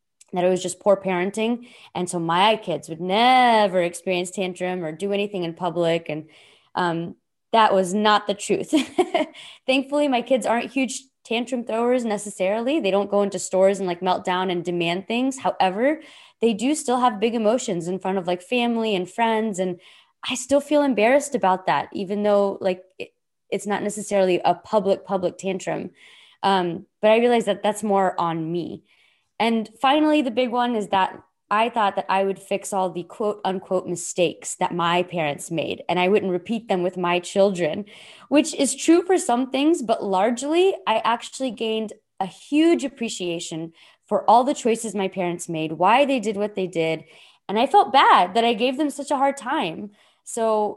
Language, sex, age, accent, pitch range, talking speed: English, female, 20-39, American, 185-250 Hz, 185 wpm